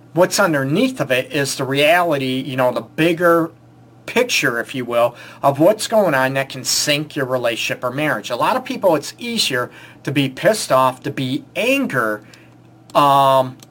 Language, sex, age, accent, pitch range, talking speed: English, male, 40-59, American, 135-175 Hz, 175 wpm